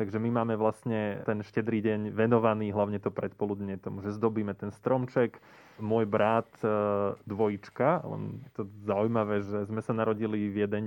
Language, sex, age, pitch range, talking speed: Slovak, male, 20-39, 105-120 Hz, 160 wpm